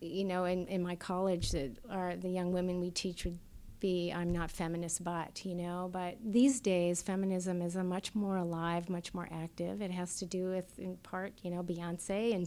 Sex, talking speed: female, 205 wpm